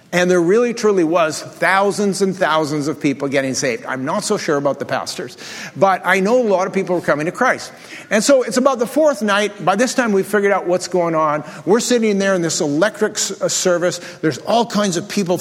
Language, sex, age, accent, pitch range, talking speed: English, male, 50-69, American, 160-210 Hz, 225 wpm